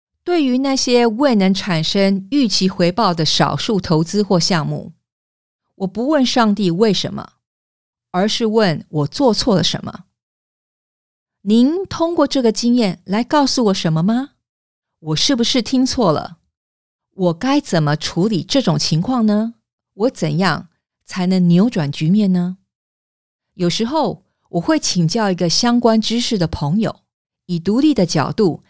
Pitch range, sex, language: 165-240 Hz, female, English